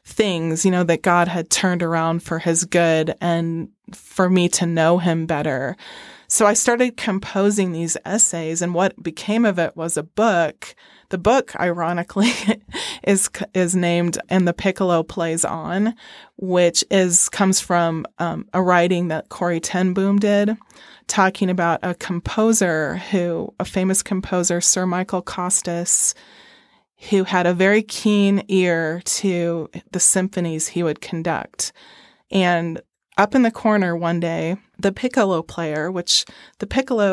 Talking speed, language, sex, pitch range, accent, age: 145 wpm, English, female, 170-195 Hz, American, 20-39